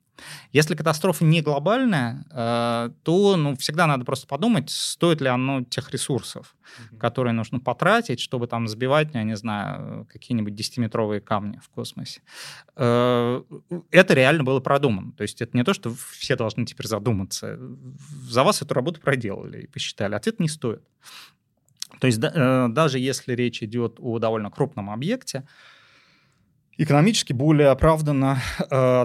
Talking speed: 135 wpm